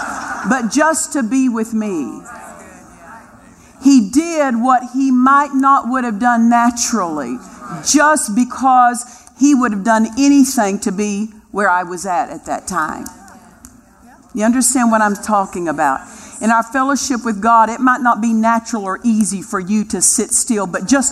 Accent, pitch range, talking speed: American, 220-260 Hz, 160 wpm